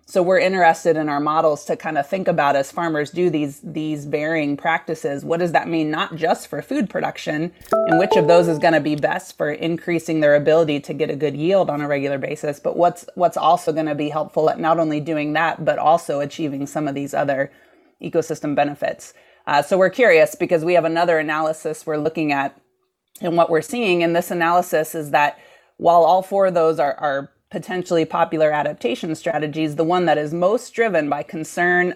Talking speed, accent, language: 205 wpm, American, English